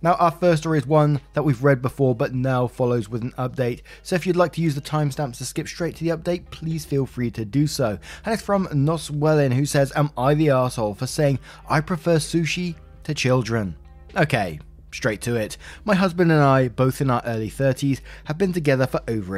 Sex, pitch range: male, 110-155 Hz